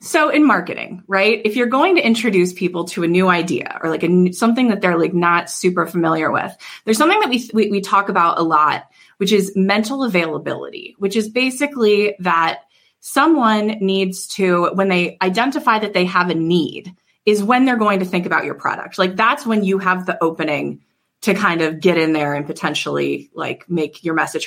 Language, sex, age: English, female, 20-39